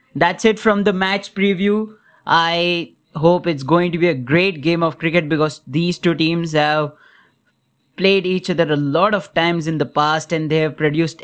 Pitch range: 150-180 Hz